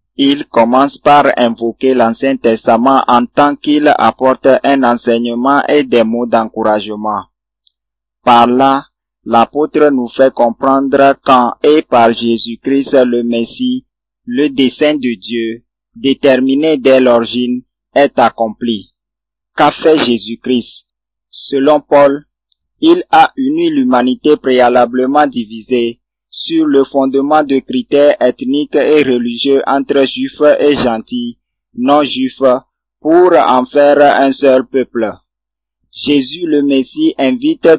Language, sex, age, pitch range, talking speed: French, male, 50-69, 120-145 Hz, 115 wpm